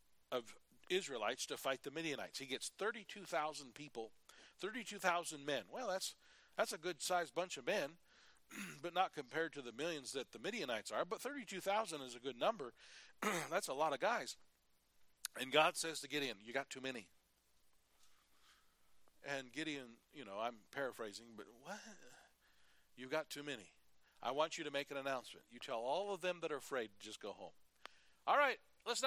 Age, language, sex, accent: 40-59, English, male, American